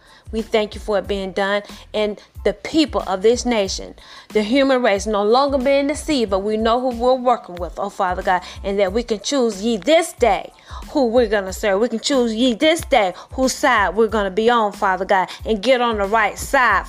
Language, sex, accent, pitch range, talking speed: English, female, American, 205-255 Hz, 225 wpm